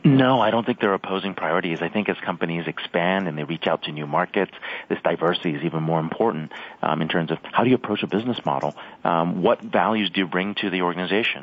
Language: English